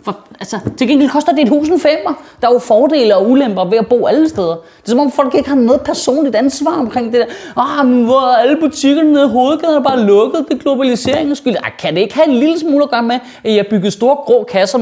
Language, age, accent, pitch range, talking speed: Danish, 30-49, native, 195-280 Hz, 245 wpm